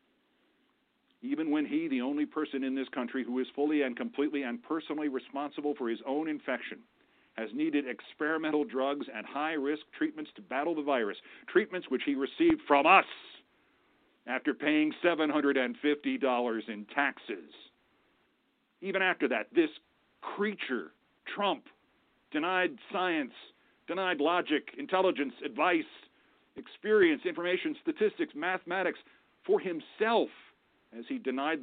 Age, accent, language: 50-69, American, English